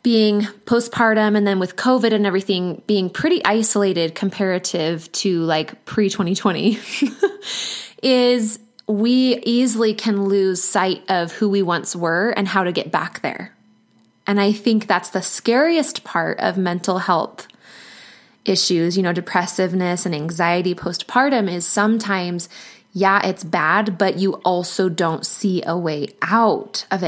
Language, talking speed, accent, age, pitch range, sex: English, 140 wpm, American, 20-39, 185-230 Hz, female